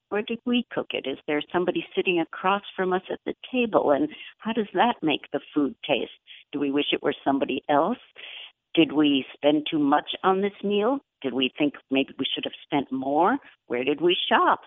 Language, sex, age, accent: English, female, 60-79, American